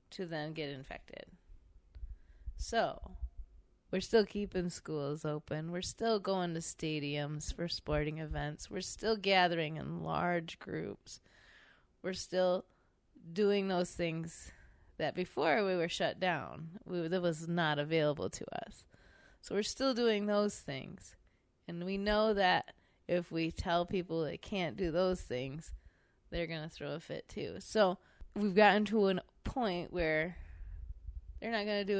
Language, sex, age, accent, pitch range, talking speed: English, female, 20-39, American, 150-190 Hz, 150 wpm